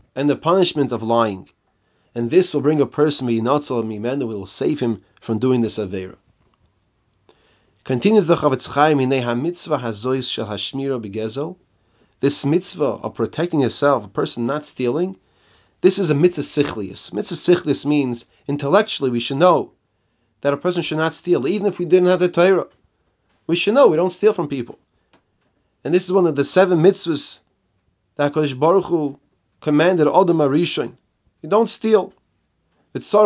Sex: male